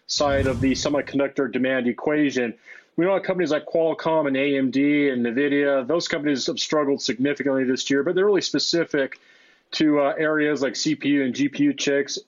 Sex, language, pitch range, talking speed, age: male, English, 135-165 Hz, 165 wpm, 30-49